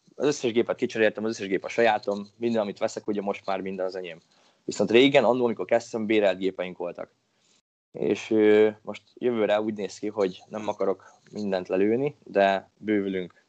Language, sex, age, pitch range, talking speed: Hungarian, male, 20-39, 100-115 Hz, 170 wpm